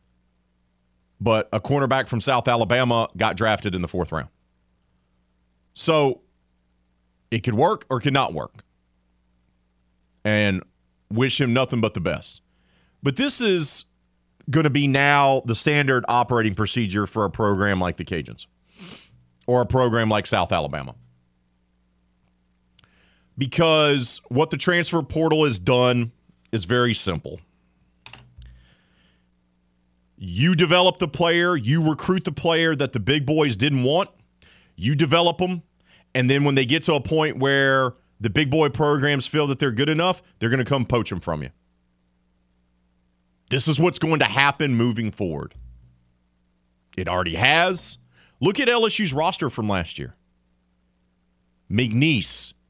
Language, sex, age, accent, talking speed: English, male, 40-59, American, 140 wpm